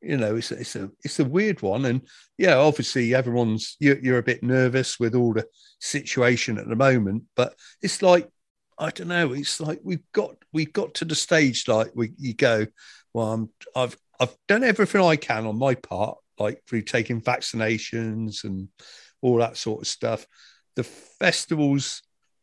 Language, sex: English, male